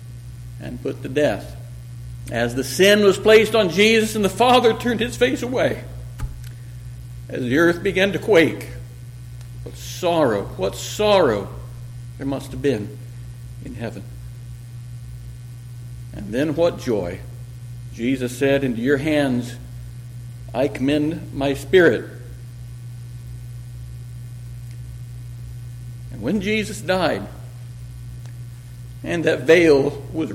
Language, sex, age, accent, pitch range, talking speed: English, male, 60-79, American, 120-185 Hz, 110 wpm